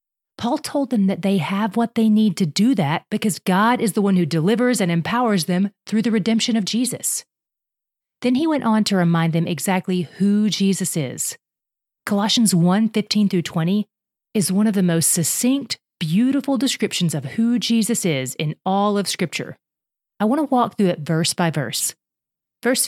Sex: female